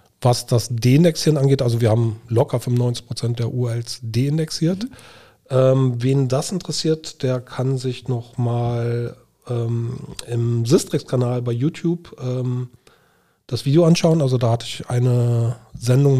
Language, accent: German, German